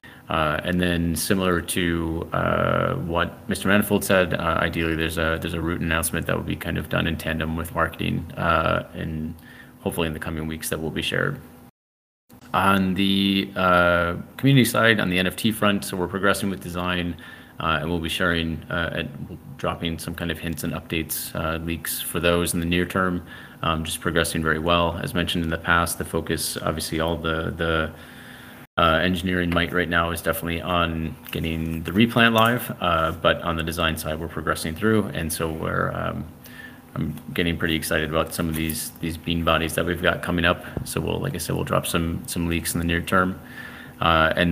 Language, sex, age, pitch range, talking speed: English, male, 30-49, 80-90 Hz, 200 wpm